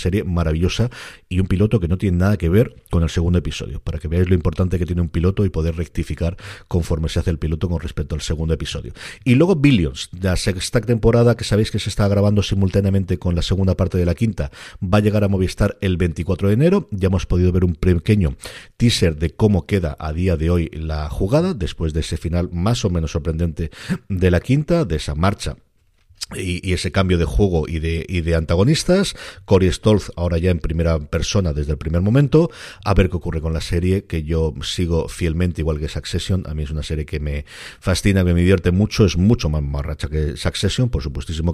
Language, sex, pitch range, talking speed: Spanish, male, 80-105 Hz, 220 wpm